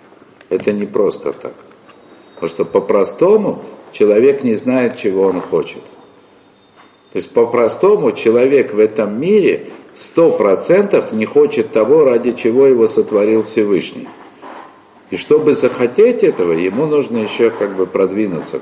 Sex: male